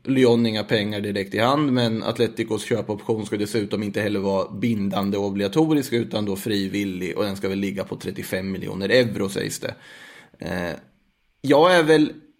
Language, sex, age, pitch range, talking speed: Swedish, male, 20-39, 105-120 Hz, 170 wpm